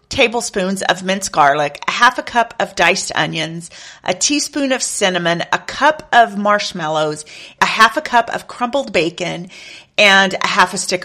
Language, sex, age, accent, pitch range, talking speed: English, female, 40-59, American, 180-235 Hz, 170 wpm